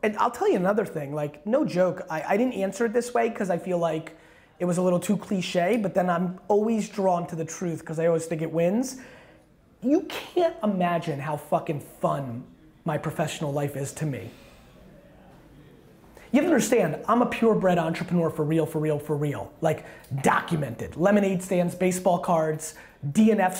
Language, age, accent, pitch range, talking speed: English, 30-49, American, 165-200 Hz, 185 wpm